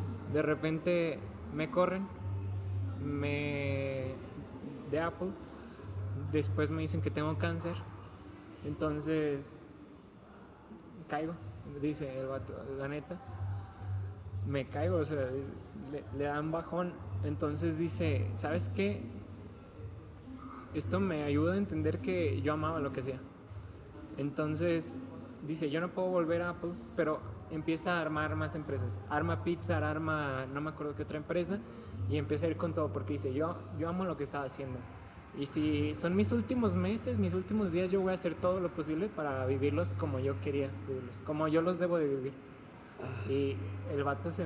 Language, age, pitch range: Spanish, 20-39, 100-150 Hz